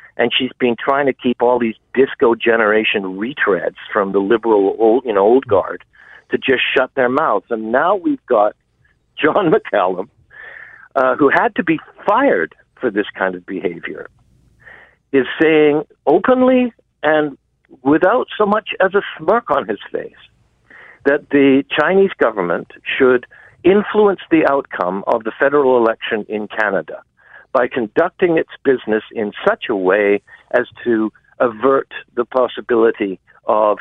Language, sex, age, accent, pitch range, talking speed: English, male, 60-79, American, 105-155 Hz, 140 wpm